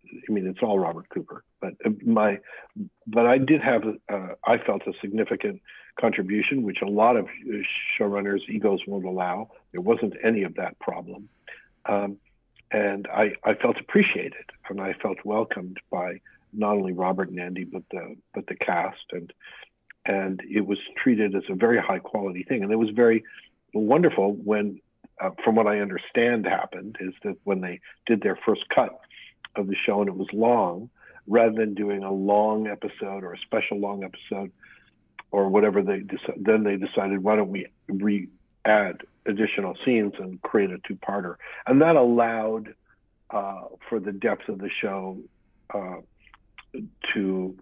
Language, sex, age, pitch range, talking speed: English, male, 60-79, 95-110 Hz, 170 wpm